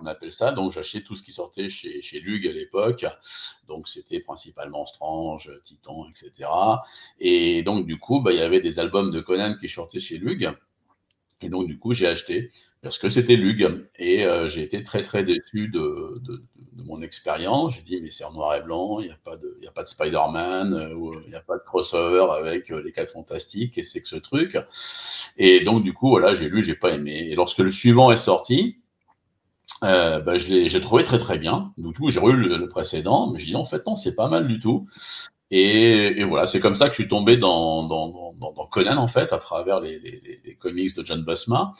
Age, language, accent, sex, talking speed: 50-69, French, French, male, 230 wpm